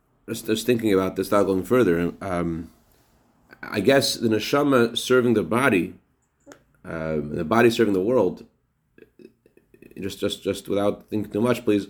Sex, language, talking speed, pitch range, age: male, English, 155 wpm, 90-115 Hz, 30-49